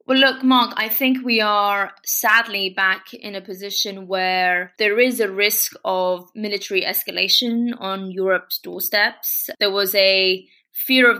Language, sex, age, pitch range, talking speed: English, female, 20-39, 195-220 Hz, 150 wpm